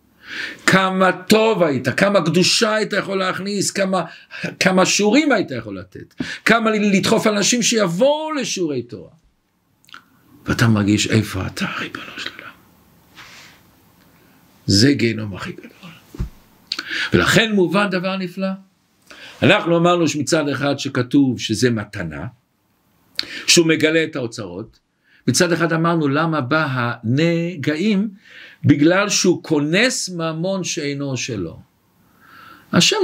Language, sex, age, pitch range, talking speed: Hebrew, male, 60-79, 120-190 Hz, 105 wpm